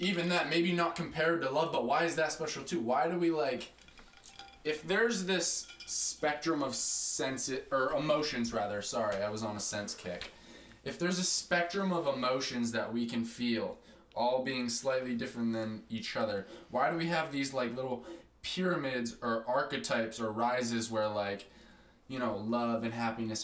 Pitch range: 120-160 Hz